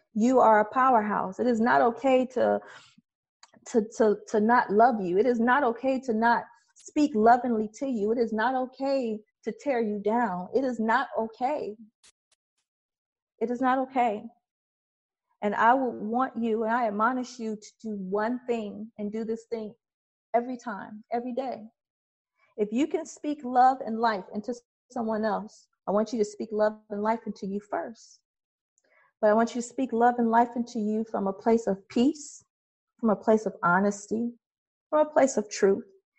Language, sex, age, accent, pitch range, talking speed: English, female, 40-59, American, 205-245 Hz, 180 wpm